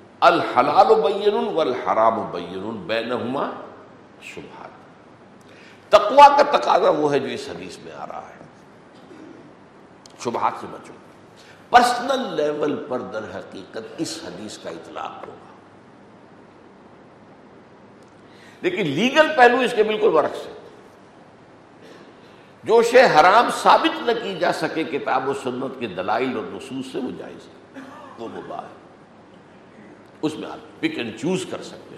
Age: 60-79